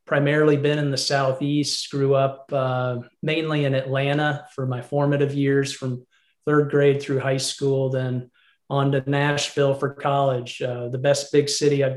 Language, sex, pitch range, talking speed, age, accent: English, male, 135-150 Hz, 165 wpm, 30-49, American